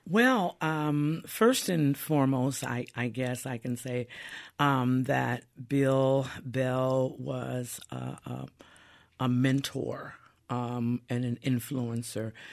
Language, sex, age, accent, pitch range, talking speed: English, female, 50-69, American, 115-130 Hz, 115 wpm